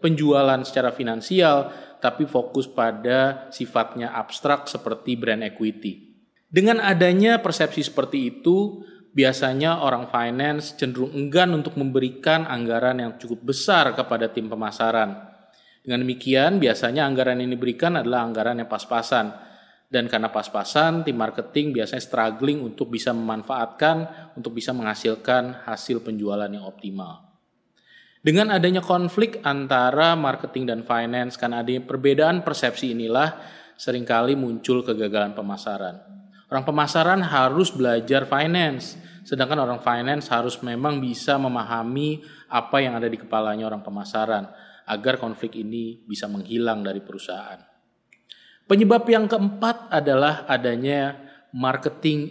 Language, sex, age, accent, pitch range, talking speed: Indonesian, male, 20-39, native, 115-155 Hz, 120 wpm